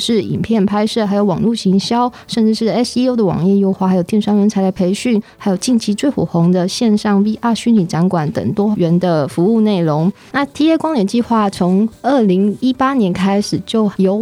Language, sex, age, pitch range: Chinese, female, 20-39, 190-230 Hz